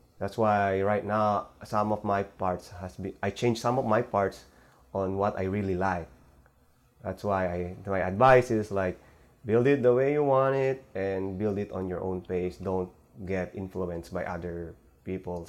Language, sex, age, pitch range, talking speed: English, male, 20-39, 85-105 Hz, 185 wpm